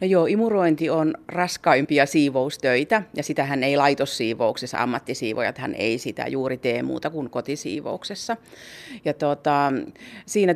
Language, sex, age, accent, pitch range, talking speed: Finnish, female, 40-59, native, 140-175 Hz, 130 wpm